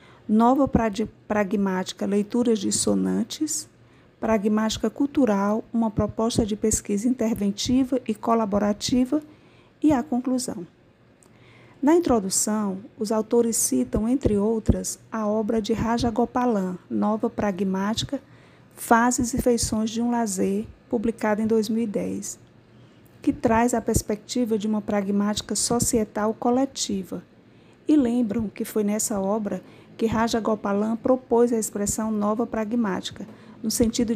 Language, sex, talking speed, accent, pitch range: Portuguese, female, 110 wpm, Brazilian, 215-250 Hz